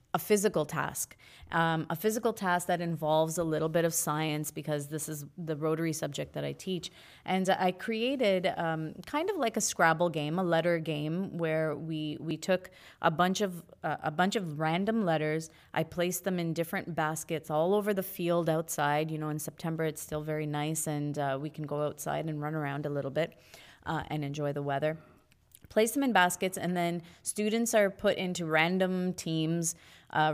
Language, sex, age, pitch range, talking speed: English, female, 30-49, 155-185 Hz, 190 wpm